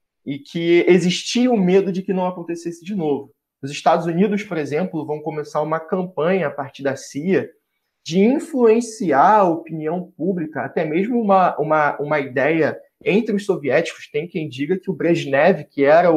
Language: Portuguese